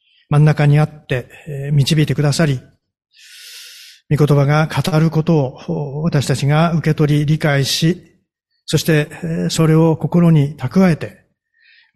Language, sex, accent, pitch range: Japanese, male, native, 135-160 Hz